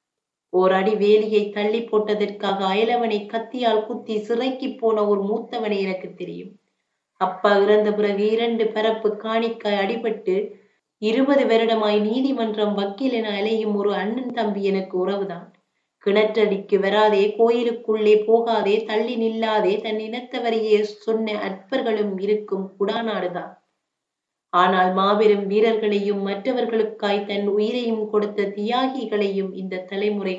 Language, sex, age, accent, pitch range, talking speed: Tamil, female, 20-39, native, 195-220 Hz, 105 wpm